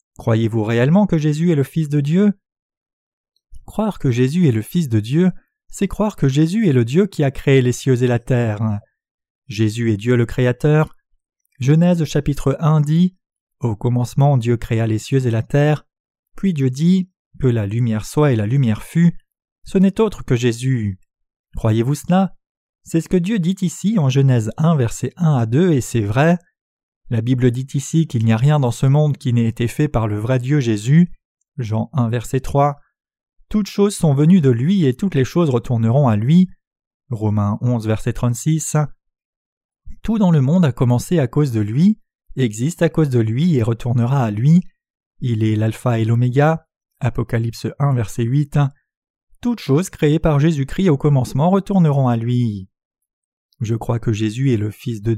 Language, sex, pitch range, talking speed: French, male, 120-165 Hz, 185 wpm